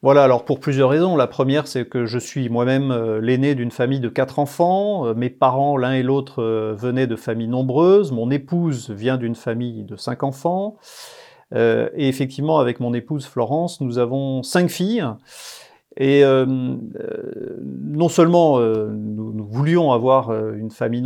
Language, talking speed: French, 170 wpm